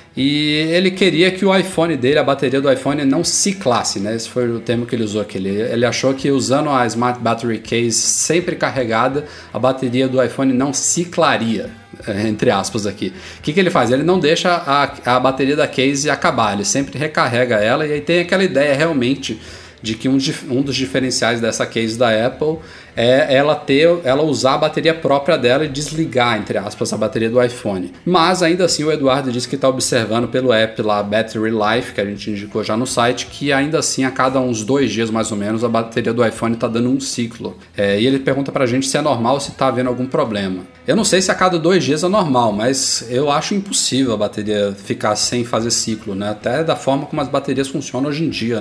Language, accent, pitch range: Portuguese, Brazilian, 115-145 Hz